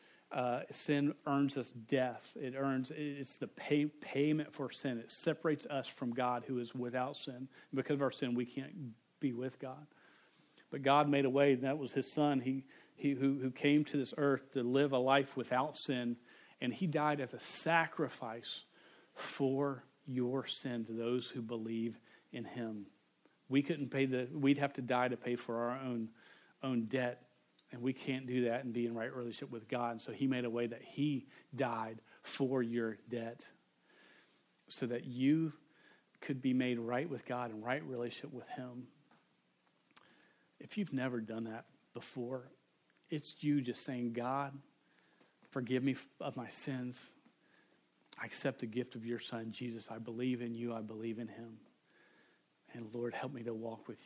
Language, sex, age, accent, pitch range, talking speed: English, male, 40-59, American, 120-140 Hz, 180 wpm